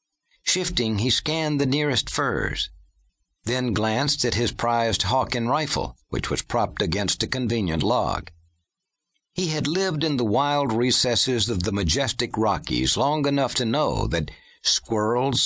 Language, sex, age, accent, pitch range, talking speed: English, male, 60-79, American, 105-140 Hz, 150 wpm